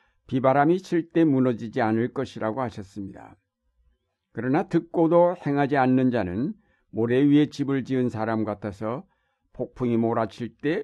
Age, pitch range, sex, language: 60-79, 110-140 Hz, male, Korean